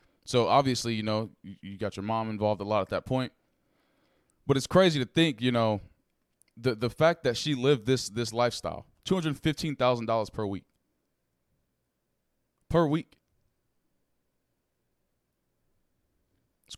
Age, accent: 20-39, American